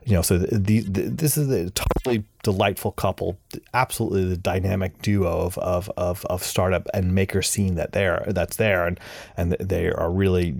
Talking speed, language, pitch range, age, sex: 190 wpm, English, 90-105 Hz, 30-49, male